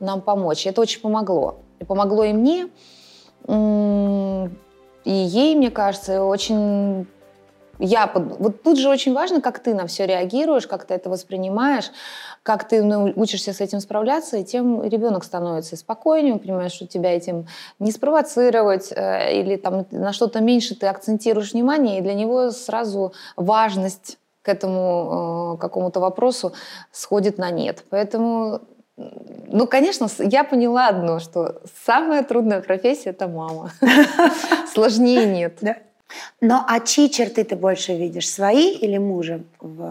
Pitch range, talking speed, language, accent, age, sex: 185-235 Hz, 135 wpm, Russian, native, 20-39, female